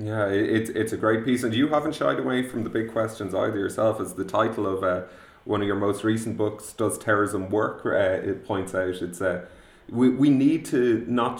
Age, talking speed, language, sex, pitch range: 30-49, 225 wpm, English, male, 95-120 Hz